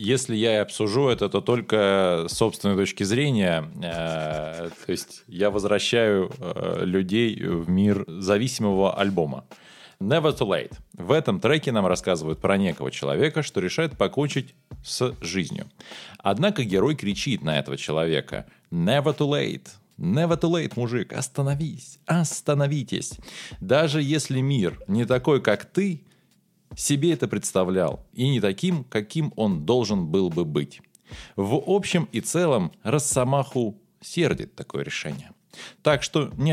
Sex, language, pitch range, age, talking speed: male, Russian, 95-155 Hz, 20-39, 140 wpm